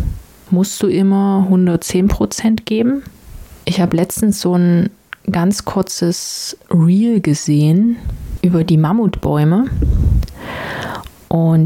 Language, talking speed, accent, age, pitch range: German, 95 wpm, German, 30-49, 165-200 Hz